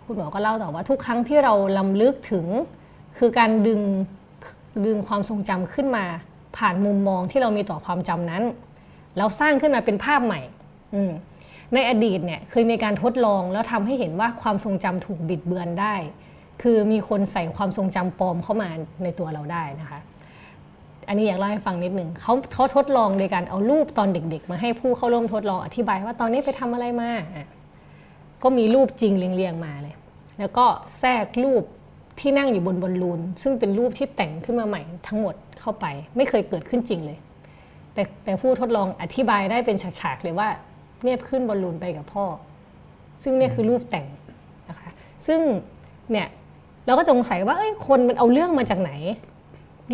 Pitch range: 180-240 Hz